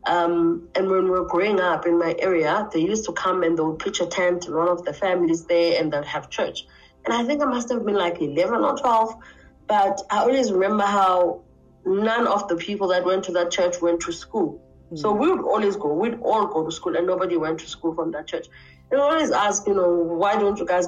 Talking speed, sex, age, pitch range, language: 245 wpm, female, 30-49, 170-205 Hz, English